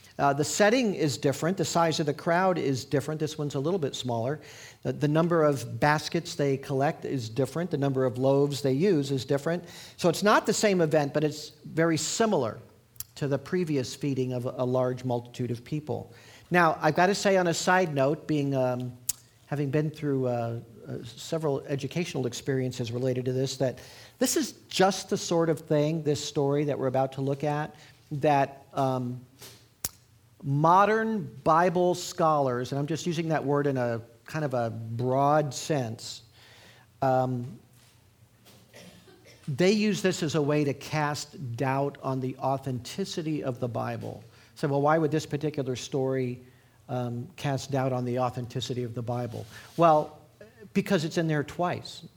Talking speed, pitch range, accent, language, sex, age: 175 wpm, 125-160 Hz, American, English, male, 50-69